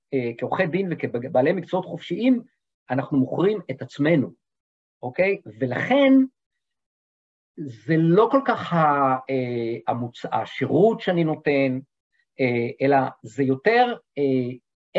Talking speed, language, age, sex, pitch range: 110 wpm, Hebrew, 50-69, male, 135-205 Hz